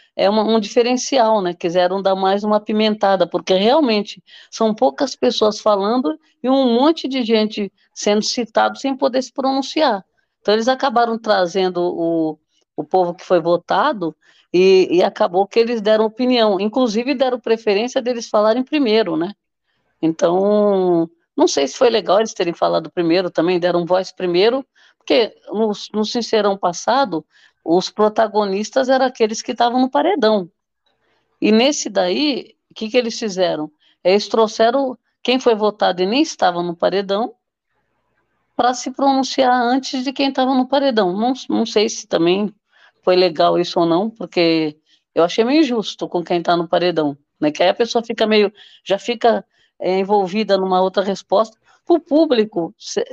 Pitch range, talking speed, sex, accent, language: 185-250 Hz, 160 wpm, female, Brazilian, Portuguese